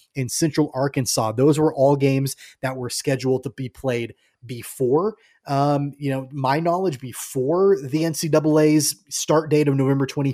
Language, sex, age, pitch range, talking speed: English, male, 20-39, 130-155 Hz, 150 wpm